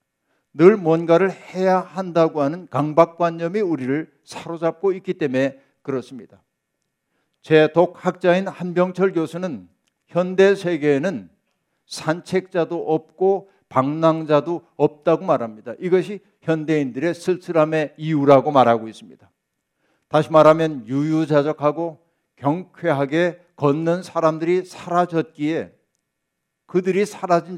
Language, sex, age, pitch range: Korean, male, 60-79, 140-180 Hz